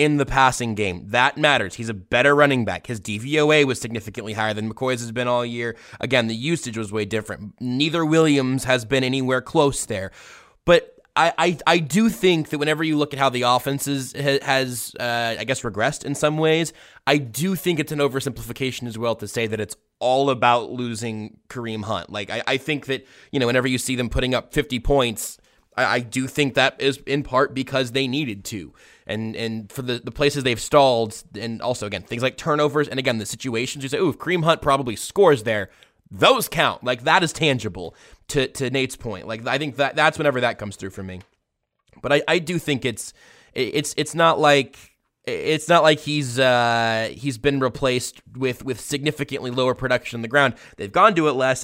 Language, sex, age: English, male, 20-39